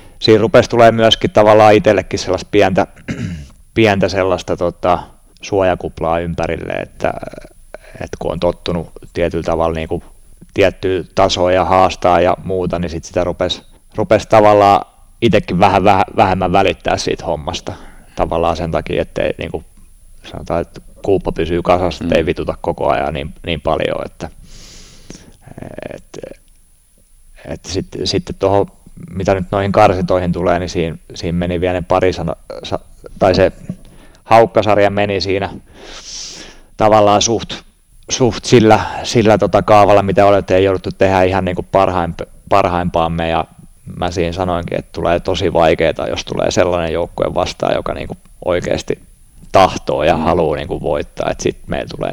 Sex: male